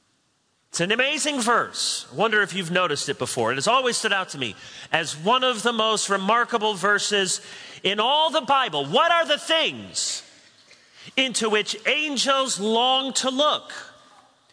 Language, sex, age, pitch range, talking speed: English, male, 40-59, 150-225 Hz, 160 wpm